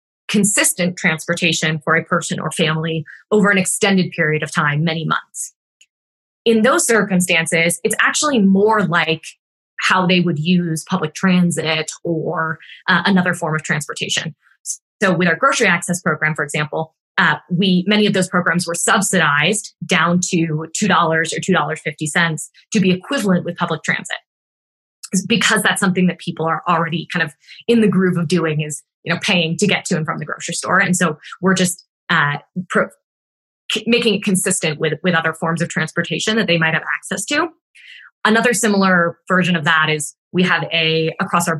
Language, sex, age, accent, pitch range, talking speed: English, female, 20-39, American, 160-195 Hz, 170 wpm